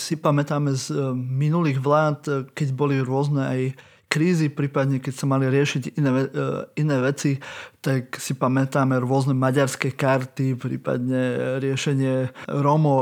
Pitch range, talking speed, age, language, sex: 135-155 Hz, 130 wpm, 20-39, Slovak, male